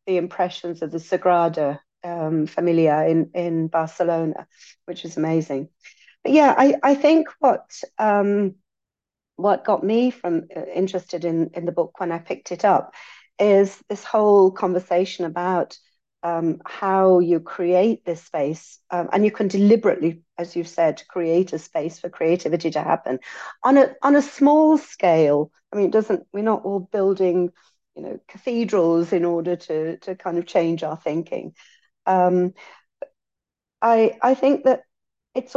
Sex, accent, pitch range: female, British, 165-205 Hz